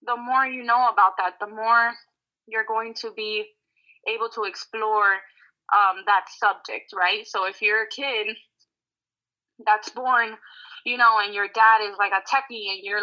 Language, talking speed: English, 170 wpm